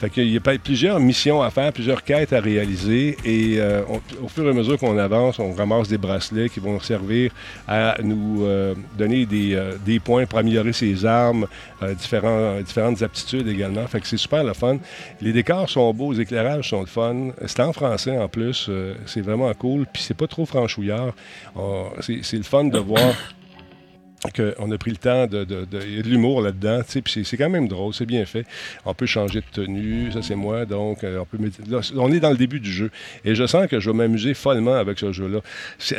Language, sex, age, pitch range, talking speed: French, male, 50-69, 105-130 Hz, 225 wpm